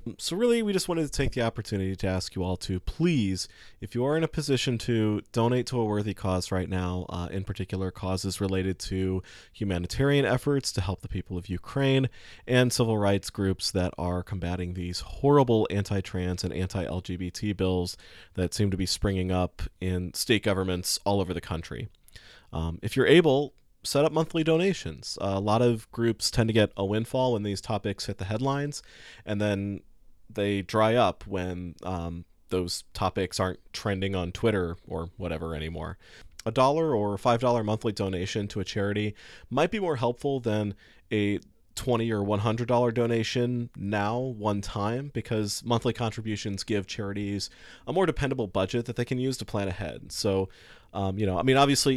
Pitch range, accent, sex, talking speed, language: 95-120 Hz, American, male, 180 wpm, English